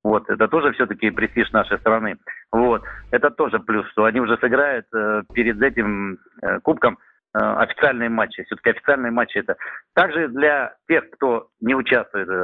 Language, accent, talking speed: Russian, native, 160 wpm